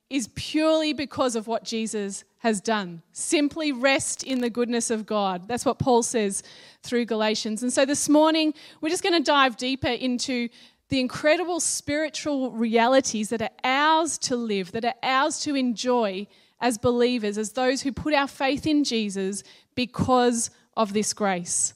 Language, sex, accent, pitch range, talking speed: English, female, Australian, 215-270 Hz, 165 wpm